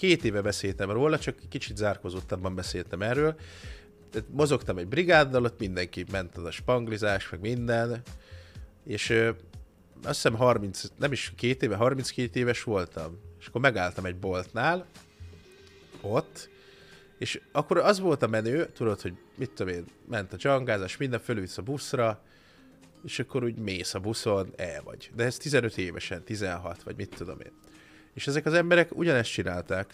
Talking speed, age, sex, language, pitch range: 160 wpm, 30-49, male, Hungarian, 95-125 Hz